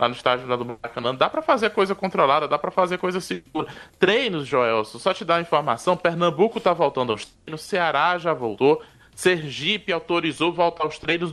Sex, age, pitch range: male, 20-39, 145-180 Hz